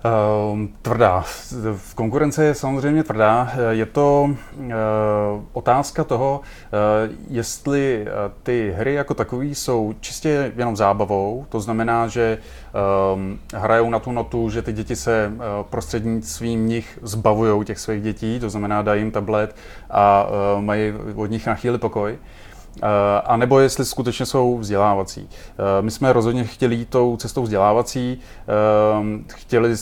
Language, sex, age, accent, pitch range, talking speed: Czech, male, 30-49, native, 105-120 Hz, 140 wpm